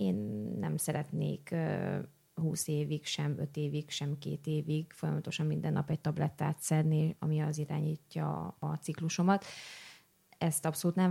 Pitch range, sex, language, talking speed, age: 150-170 Hz, female, Hungarian, 140 wpm, 20-39